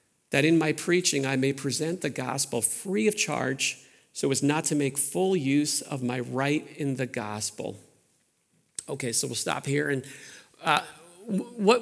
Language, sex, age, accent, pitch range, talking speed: English, male, 50-69, American, 140-195 Hz, 170 wpm